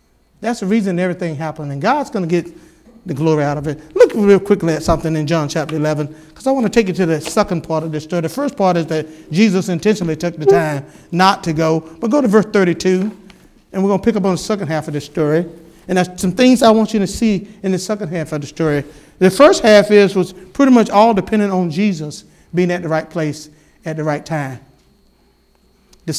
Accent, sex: American, male